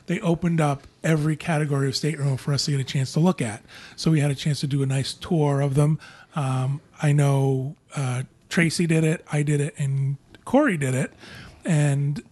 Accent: American